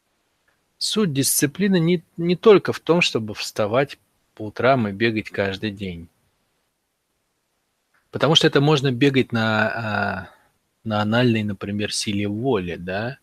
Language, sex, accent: Russian, male, native